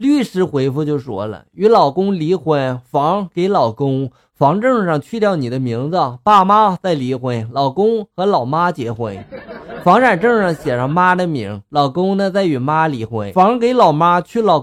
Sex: male